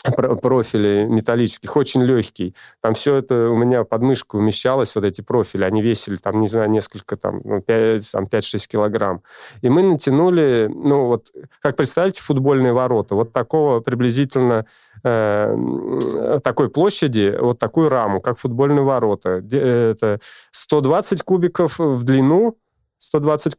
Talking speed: 130 wpm